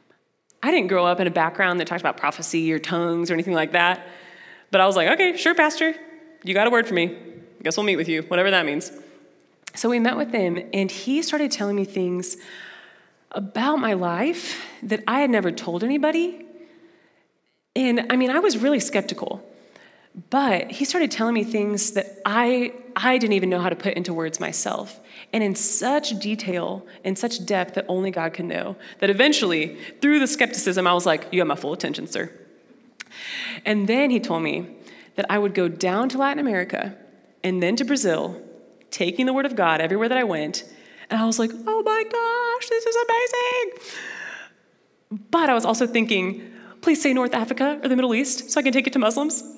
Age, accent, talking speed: 30-49, American, 200 wpm